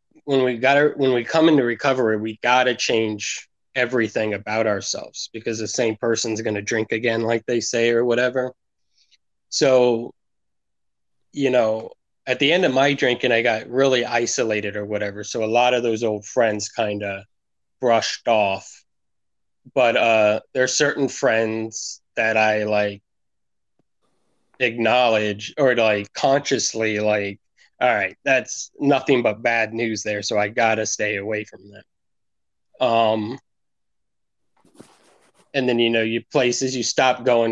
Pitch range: 105-125 Hz